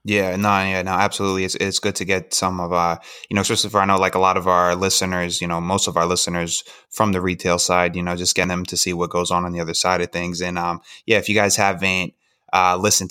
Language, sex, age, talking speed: English, male, 20-39, 275 wpm